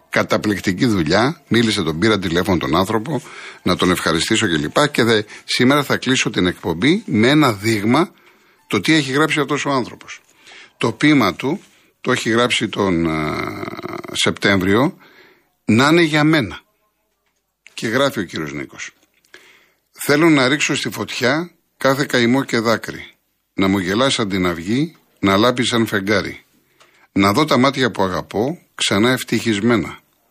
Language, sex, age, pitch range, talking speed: Greek, male, 60-79, 100-130 Hz, 145 wpm